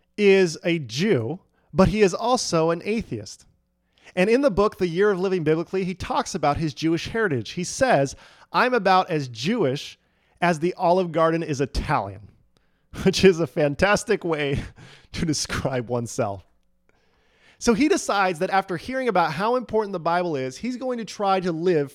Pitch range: 135-195 Hz